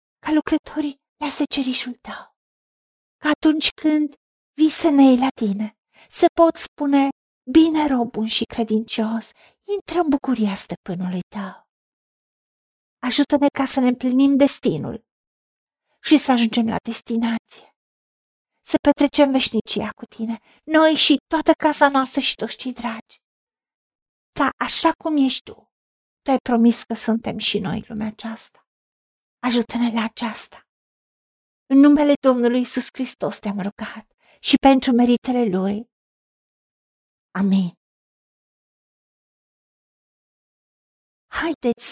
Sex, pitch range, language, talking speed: female, 220-290 Hz, Romanian, 115 wpm